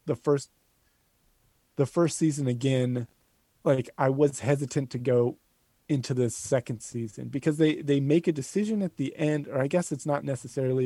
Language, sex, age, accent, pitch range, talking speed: English, male, 30-49, American, 115-135 Hz, 170 wpm